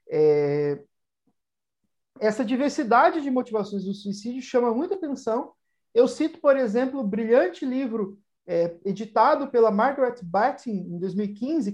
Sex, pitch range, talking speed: male, 200-270 Hz, 130 wpm